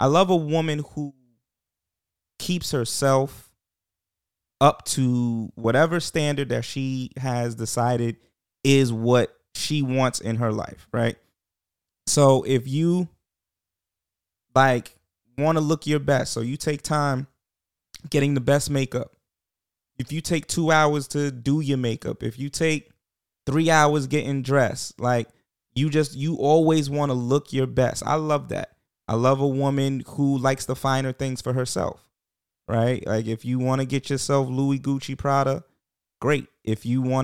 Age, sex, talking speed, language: 20-39, male, 155 wpm, English